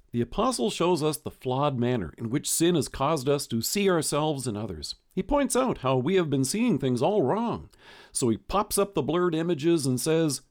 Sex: male